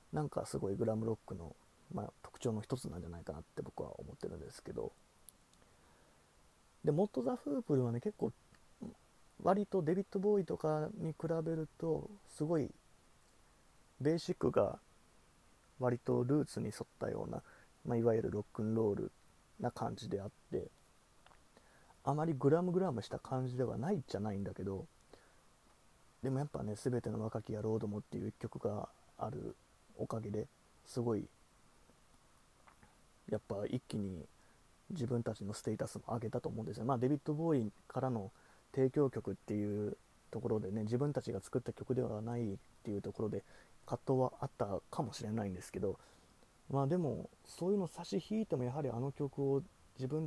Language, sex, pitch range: Japanese, male, 105-145 Hz